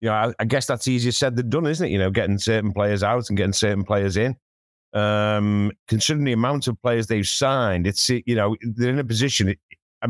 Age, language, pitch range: 50-69, English, 105-150 Hz